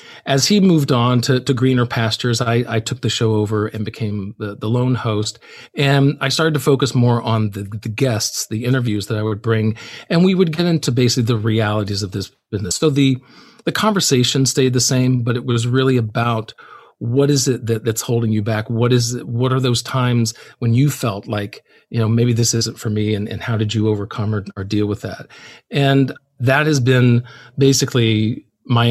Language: English